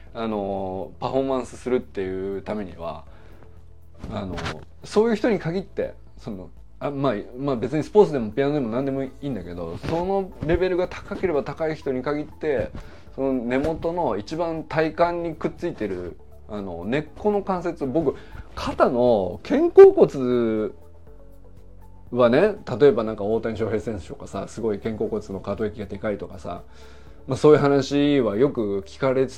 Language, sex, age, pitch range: Japanese, male, 20-39, 100-150 Hz